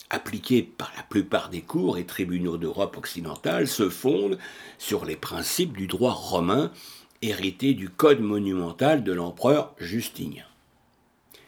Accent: French